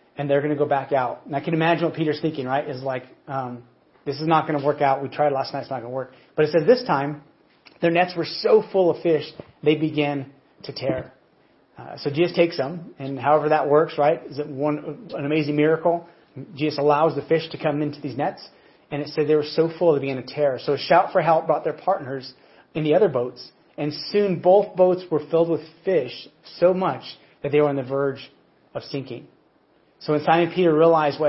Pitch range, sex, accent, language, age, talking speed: 135-160 Hz, male, American, English, 30-49, 235 wpm